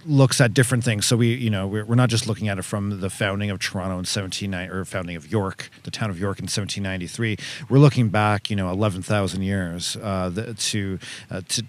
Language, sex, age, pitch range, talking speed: English, male, 40-59, 100-120 Hz, 210 wpm